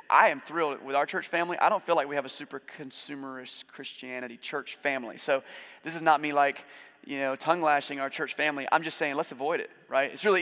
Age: 30-49